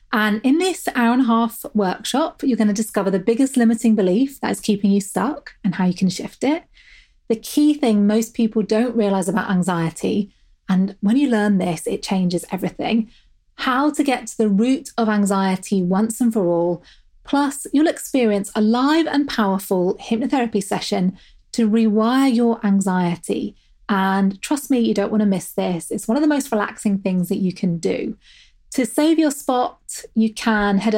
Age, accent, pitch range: 30-49, British, 195-250 Hz